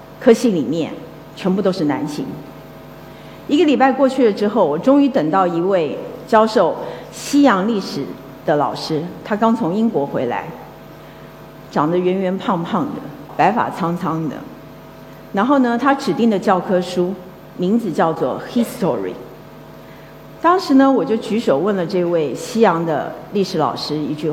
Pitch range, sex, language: 180-240 Hz, female, Chinese